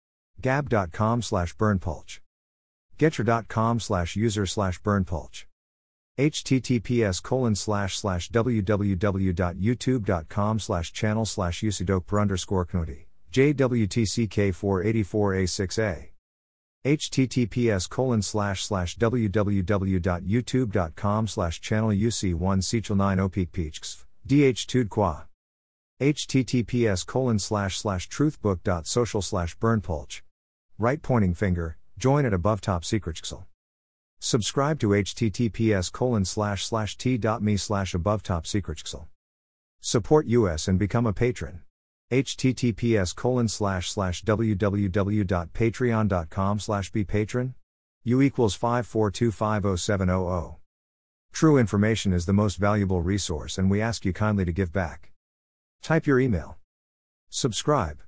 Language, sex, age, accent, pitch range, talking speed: English, male, 50-69, American, 90-115 Hz, 90 wpm